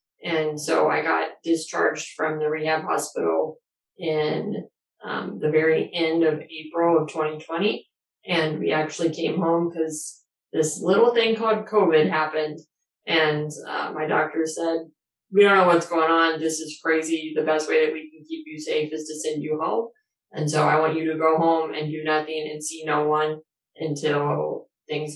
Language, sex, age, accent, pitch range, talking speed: English, female, 20-39, American, 155-165 Hz, 180 wpm